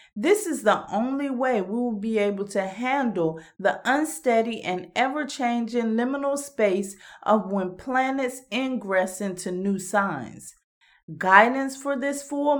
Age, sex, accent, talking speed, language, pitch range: 30-49, female, American, 135 wpm, English, 205-270 Hz